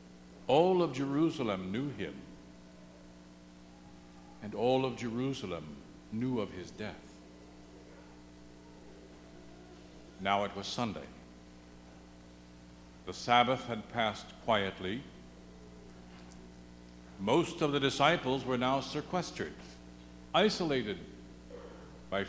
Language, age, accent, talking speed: English, 60-79, American, 85 wpm